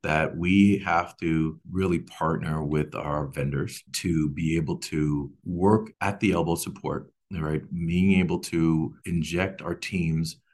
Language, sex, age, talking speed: English, male, 40-59, 140 wpm